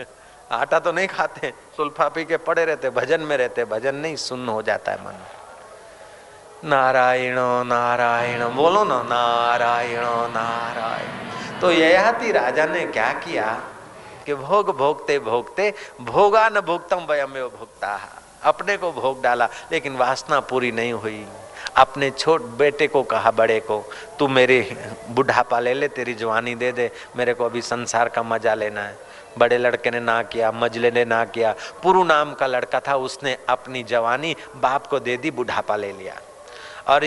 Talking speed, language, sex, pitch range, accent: 140 wpm, Hindi, male, 115-150 Hz, native